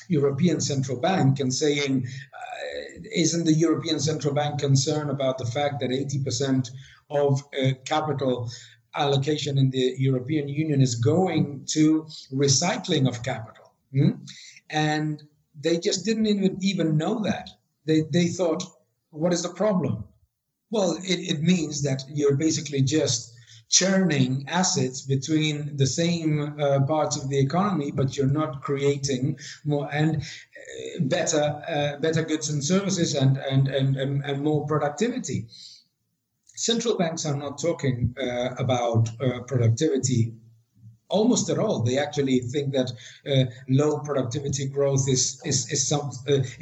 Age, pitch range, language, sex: 50-69, 130-155 Hz, English, male